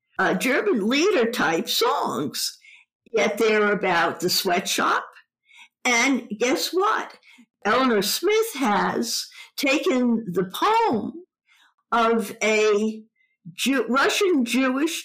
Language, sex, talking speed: English, female, 85 wpm